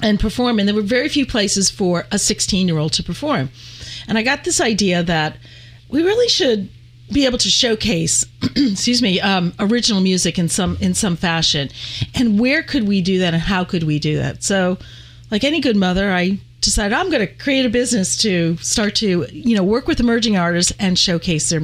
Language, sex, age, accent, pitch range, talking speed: English, female, 40-59, American, 160-215 Hz, 210 wpm